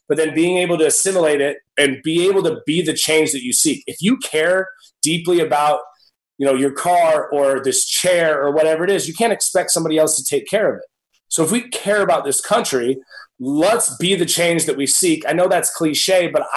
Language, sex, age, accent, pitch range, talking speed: English, male, 30-49, American, 145-180 Hz, 225 wpm